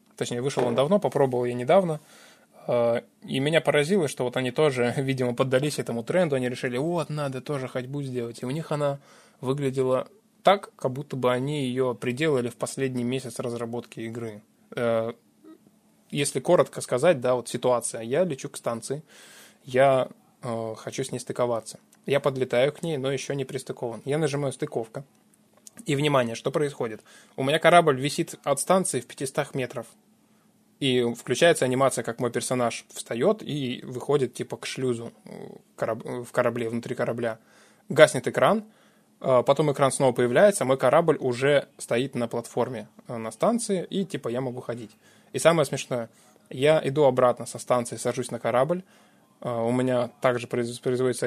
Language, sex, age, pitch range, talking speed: Russian, male, 20-39, 120-155 Hz, 155 wpm